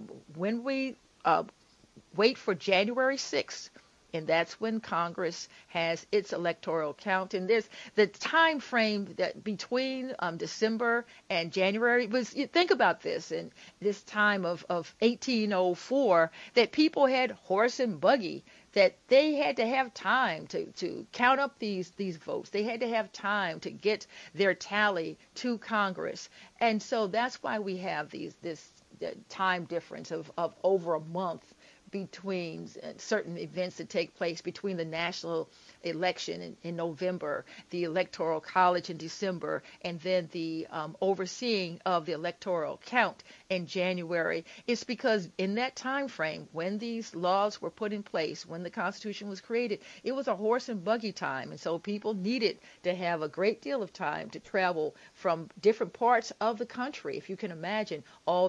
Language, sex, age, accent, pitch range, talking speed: English, female, 50-69, American, 175-230 Hz, 165 wpm